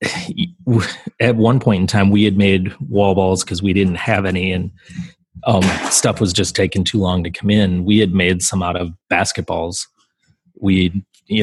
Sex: male